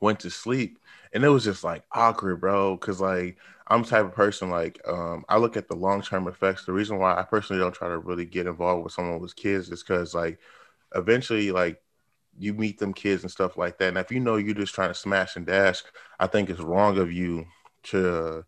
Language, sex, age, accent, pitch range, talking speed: English, male, 20-39, American, 85-100 Hz, 230 wpm